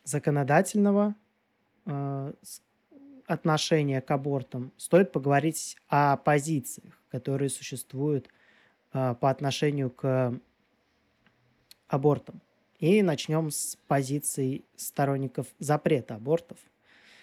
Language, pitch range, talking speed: Russian, 130-160 Hz, 80 wpm